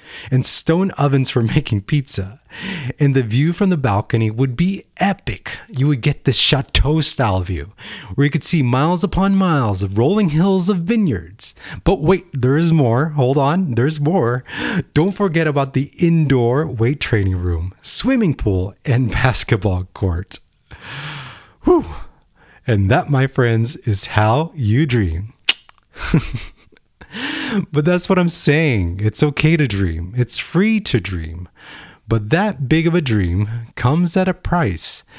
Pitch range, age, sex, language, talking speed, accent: 110-160 Hz, 30-49, male, English, 145 wpm, American